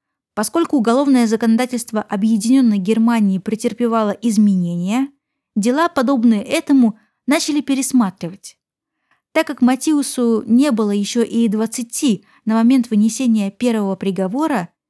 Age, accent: 20-39, native